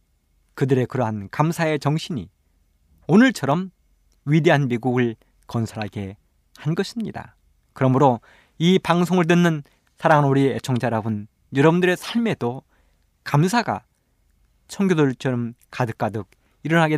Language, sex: Korean, male